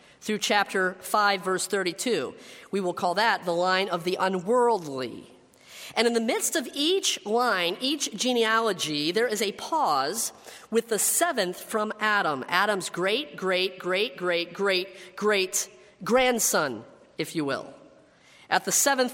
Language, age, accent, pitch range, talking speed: English, 40-59, American, 175-225 Hz, 145 wpm